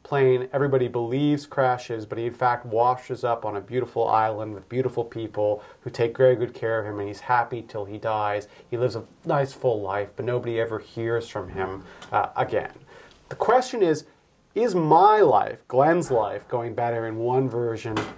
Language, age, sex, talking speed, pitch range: English, 40-59, male, 190 wpm, 110-130 Hz